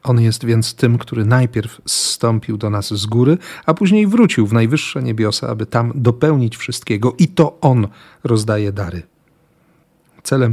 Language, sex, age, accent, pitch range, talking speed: Polish, male, 40-59, native, 110-135 Hz, 155 wpm